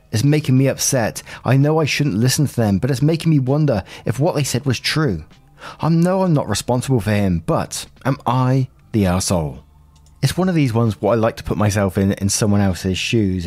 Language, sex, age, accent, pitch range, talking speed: English, male, 20-39, British, 100-135 Hz, 225 wpm